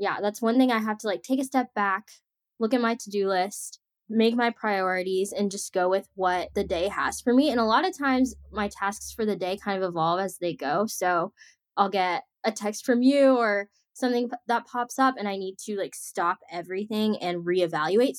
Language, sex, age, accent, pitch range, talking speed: English, female, 10-29, American, 180-215 Hz, 225 wpm